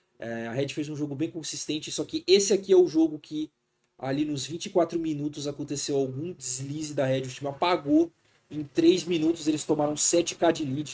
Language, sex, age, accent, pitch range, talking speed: Portuguese, male, 20-39, Brazilian, 115-145 Hz, 190 wpm